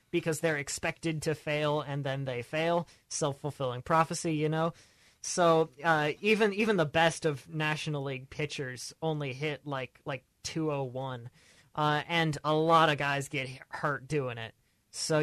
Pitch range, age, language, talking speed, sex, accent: 140-175 Hz, 20-39, English, 160 wpm, male, American